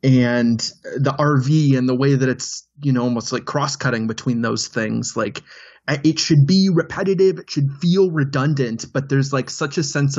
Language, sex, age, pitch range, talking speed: English, male, 20-39, 130-160 Hz, 190 wpm